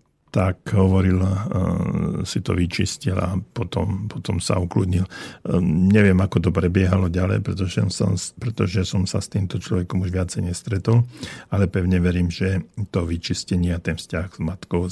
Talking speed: 140 wpm